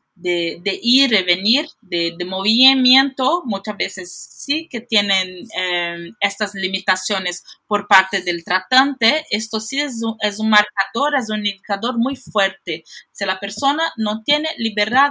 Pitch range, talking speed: 205-270 Hz, 155 wpm